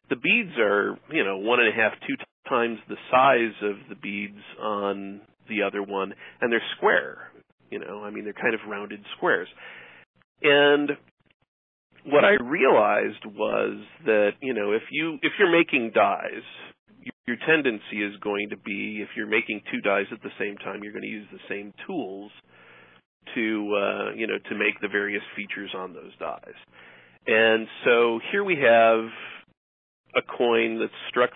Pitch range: 105-120 Hz